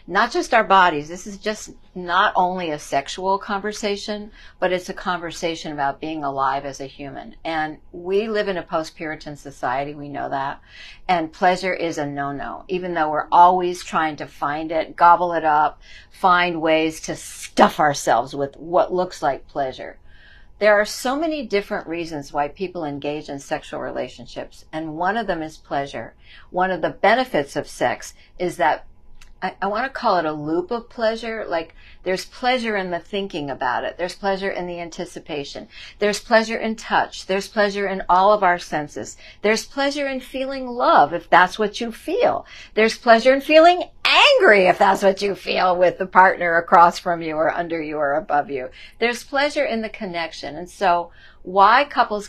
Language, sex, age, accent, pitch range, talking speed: English, female, 50-69, American, 155-210 Hz, 180 wpm